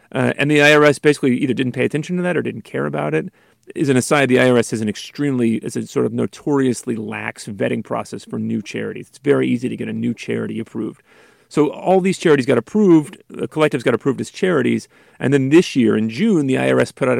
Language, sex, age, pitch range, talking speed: English, male, 40-59, 120-155 Hz, 235 wpm